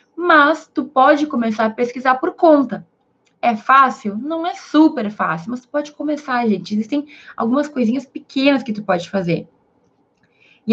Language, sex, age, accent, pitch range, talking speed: Portuguese, female, 20-39, Brazilian, 220-290 Hz, 155 wpm